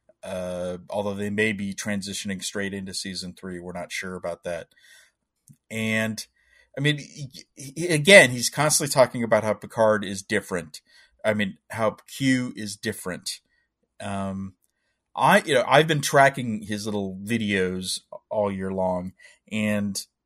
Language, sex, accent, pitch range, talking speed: English, male, American, 100-145 Hz, 140 wpm